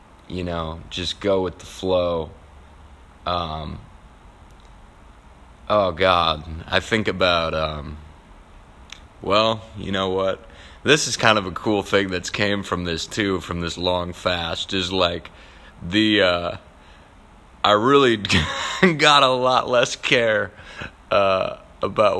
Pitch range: 80-95 Hz